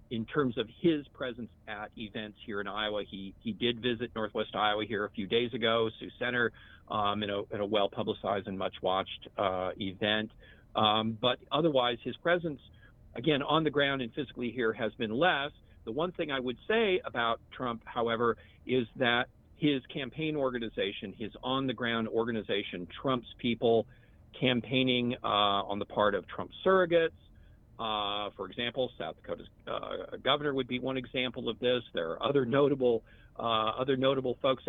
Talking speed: 165 wpm